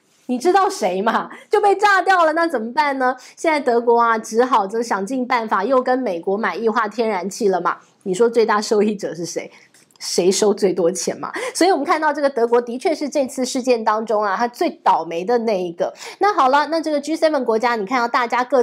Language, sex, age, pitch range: Chinese, female, 20-39, 215-285 Hz